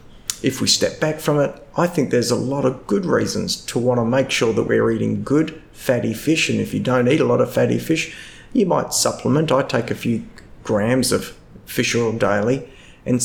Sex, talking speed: male, 220 wpm